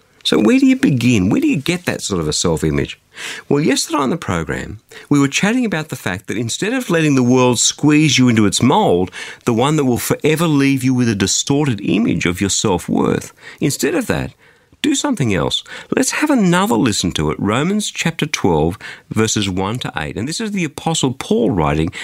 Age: 50-69